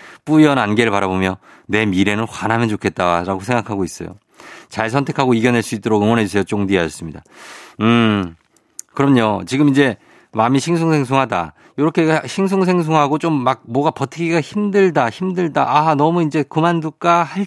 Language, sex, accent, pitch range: Korean, male, native, 100-145 Hz